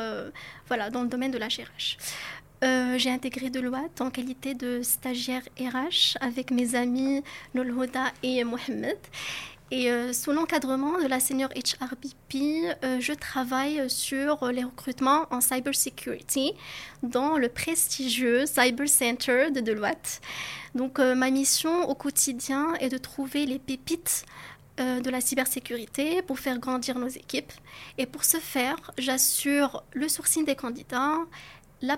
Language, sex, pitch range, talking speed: French, female, 255-280 Hz, 140 wpm